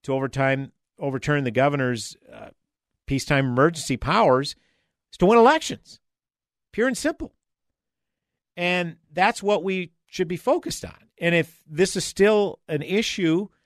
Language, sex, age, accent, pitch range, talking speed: English, male, 50-69, American, 130-175 Hz, 130 wpm